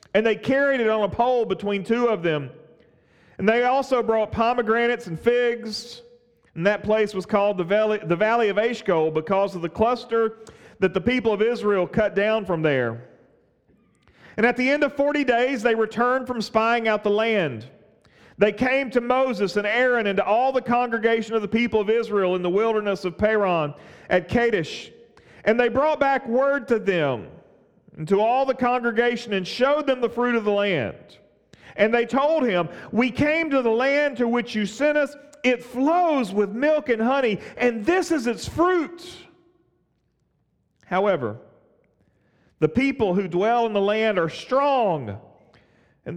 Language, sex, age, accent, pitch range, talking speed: English, male, 40-59, American, 195-245 Hz, 175 wpm